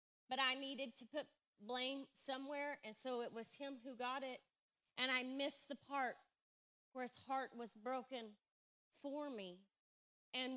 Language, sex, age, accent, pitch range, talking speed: English, female, 30-49, American, 245-325 Hz, 160 wpm